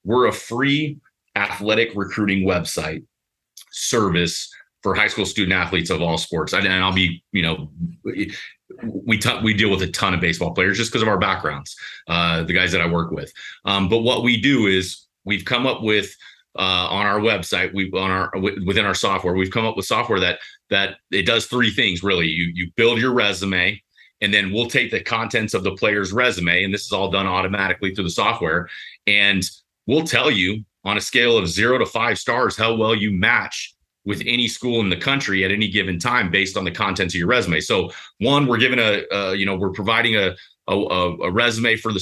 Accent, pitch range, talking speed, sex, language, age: American, 95-115 Hz, 215 wpm, male, English, 30-49